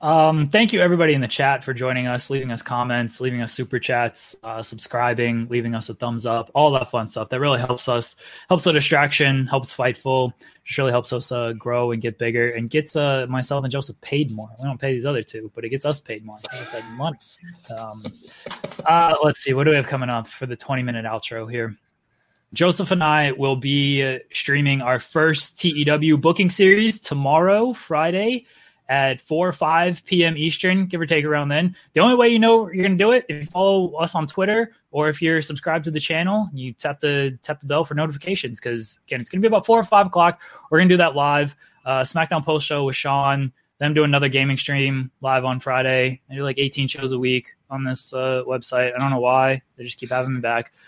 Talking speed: 220 wpm